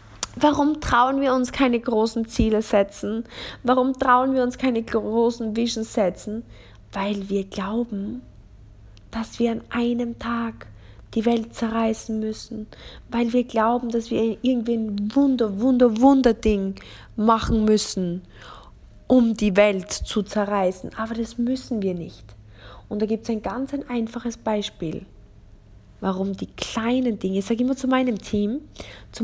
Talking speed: 145 wpm